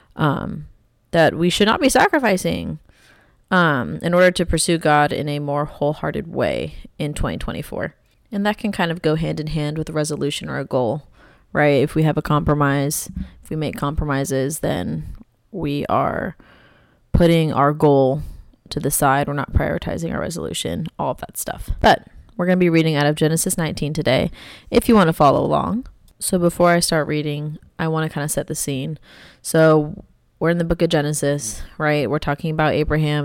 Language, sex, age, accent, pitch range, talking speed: English, female, 20-39, American, 145-165 Hz, 190 wpm